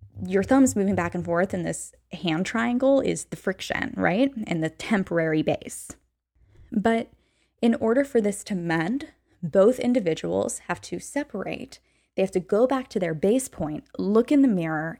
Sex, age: female, 10-29